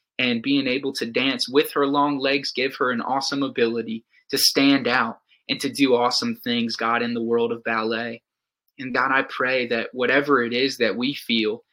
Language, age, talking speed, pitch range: English, 20-39, 200 wpm, 115-135 Hz